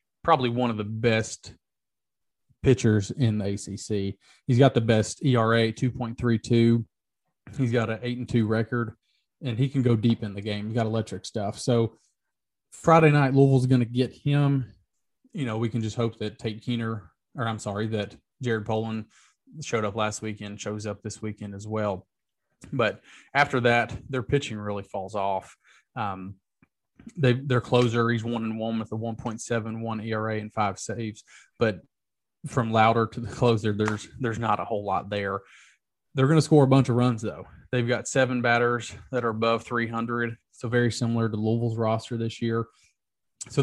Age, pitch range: 30-49, 110-120 Hz